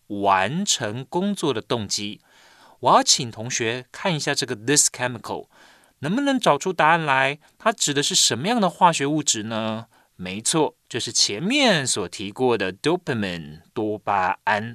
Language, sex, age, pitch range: Chinese, male, 30-49, 120-185 Hz